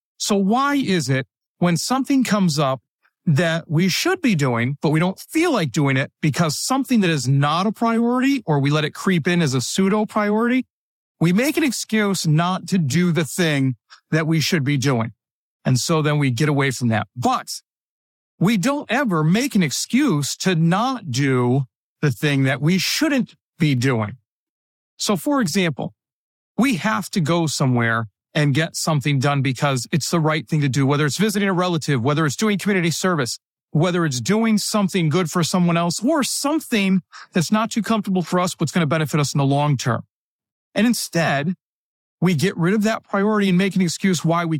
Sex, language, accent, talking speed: male, English, American, 195 wpm